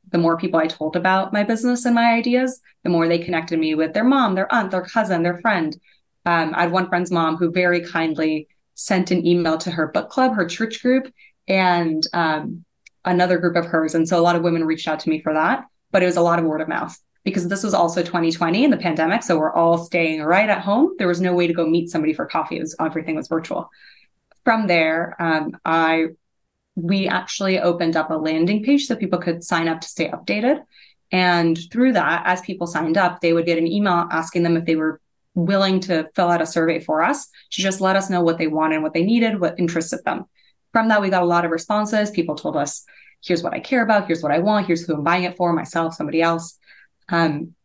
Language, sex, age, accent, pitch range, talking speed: English, female, 20-39, American, 160-190 Hz, 235 wpm